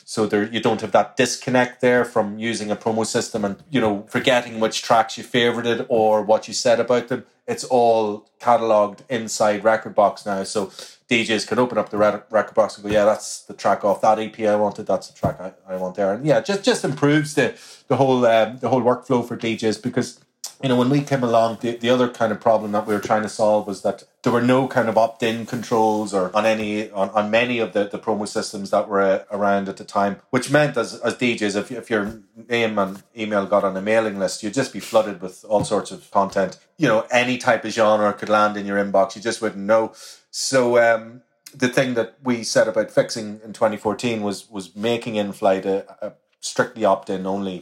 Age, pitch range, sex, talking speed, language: 30-49, 105-120 Hz, male, 230 wpm, English